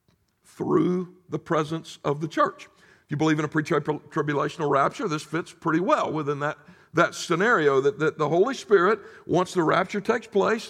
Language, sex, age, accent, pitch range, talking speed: English, male, 60-79, American, 170-210 Hz, 175 wpm